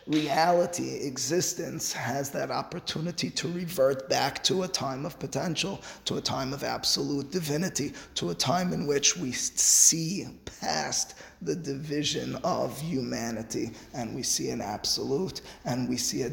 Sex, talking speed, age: male, 145 wpm, 20-39